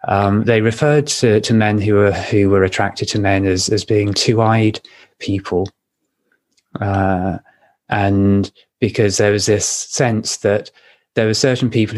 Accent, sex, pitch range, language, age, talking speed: British, male, 100-115 Hz, English, 20-39, 145 wpm